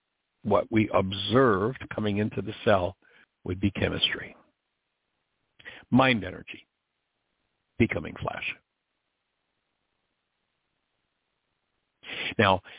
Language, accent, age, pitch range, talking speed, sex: English, American, 60-79, 100-130 Hz, 70 wpm, male